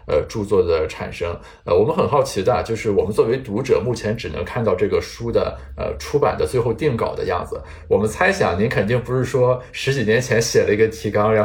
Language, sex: Chinese, male